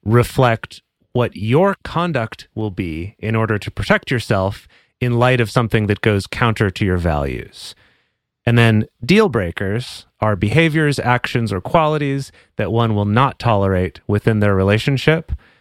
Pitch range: 95-120 Hz